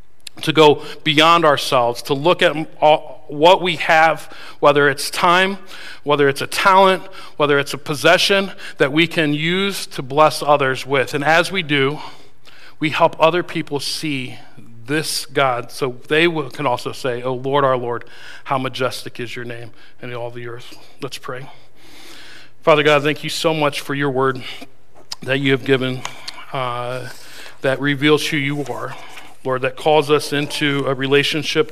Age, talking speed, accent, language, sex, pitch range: 40-59, 165 wpm, American, English, male, 130-155 Hz